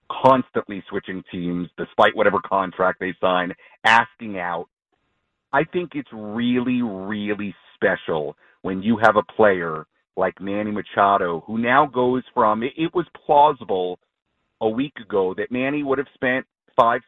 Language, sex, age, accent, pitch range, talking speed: English, male, 40-59, American, 105-140 Hz, 140 wpm